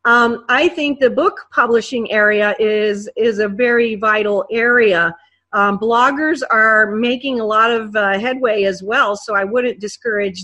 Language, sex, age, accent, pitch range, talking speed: English, female, 40-59, American, 215-250 Hz, 160 wpm